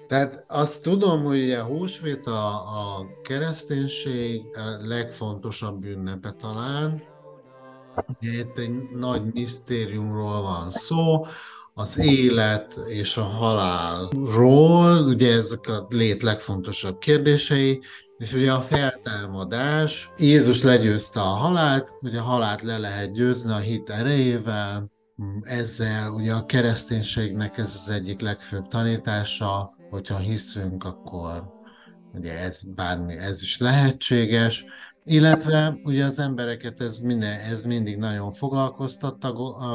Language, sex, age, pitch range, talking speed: Hungarian, male, 50-69, 105-130 Hz, 115 wpm